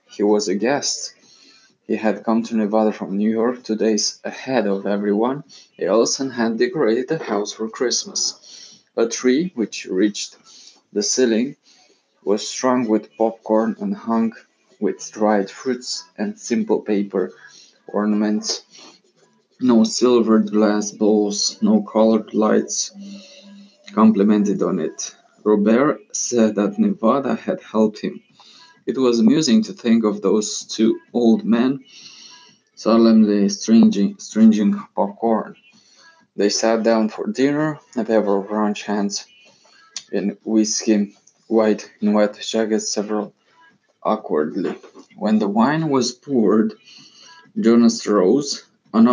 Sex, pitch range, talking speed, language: male, 105-150 Hz, 120 wpm, Romanian